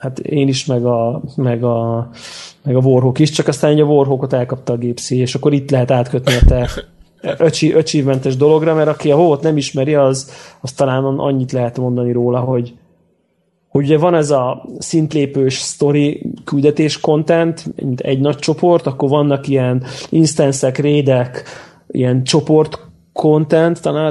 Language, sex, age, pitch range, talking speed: Hungarian, male, 20-39, 125-150 Hz, 160 wpm